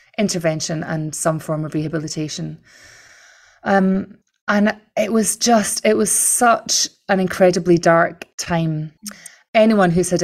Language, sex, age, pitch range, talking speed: English, female, 20-39, 165-190 Hz, 125 wpm